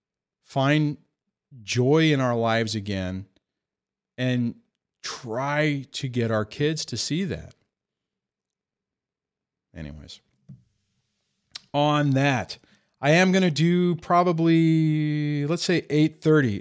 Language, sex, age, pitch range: English, male, 40-59, 110-150 Hz